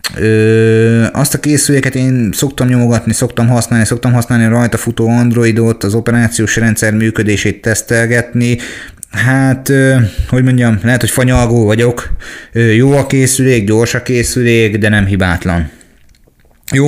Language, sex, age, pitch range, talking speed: Hungarian, male, 20-39, 105-120 Hz, 130 wpm